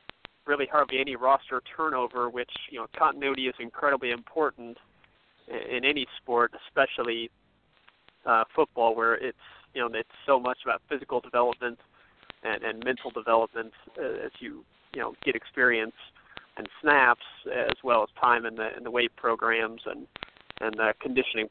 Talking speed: 155 wpm